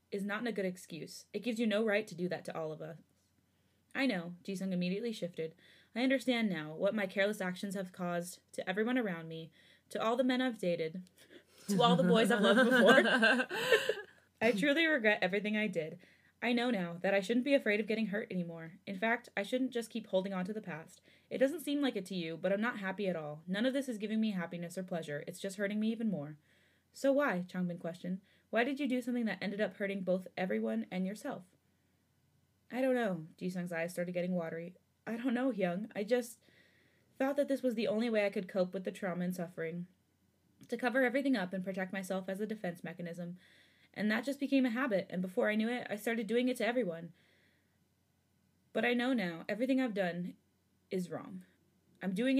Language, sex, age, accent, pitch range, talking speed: English, female, 20-39, American, 175-235 Hz, 220 wpm